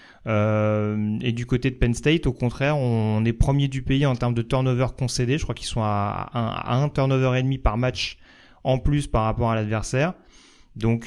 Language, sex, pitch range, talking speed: French, male, 110-135 Hz, 210 wpm